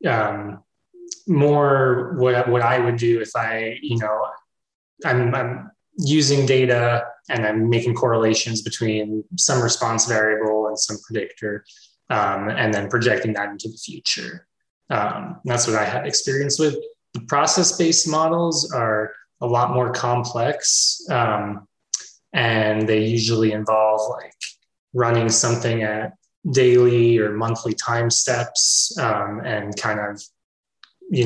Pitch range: 110-135 Hz